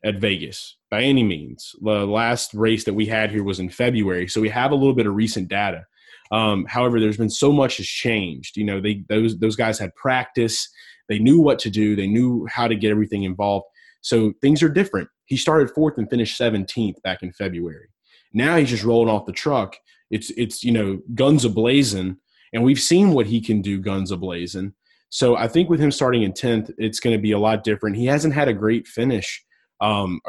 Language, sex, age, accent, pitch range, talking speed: English, male, 20-39, American, 100-120 Hz, 215 wpm